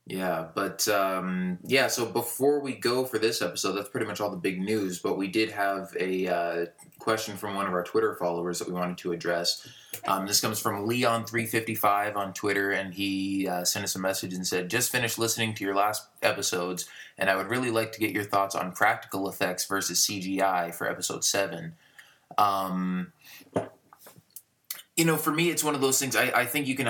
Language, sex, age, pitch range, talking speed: English, male, 20-39, 90-115 Hz, 205 wpm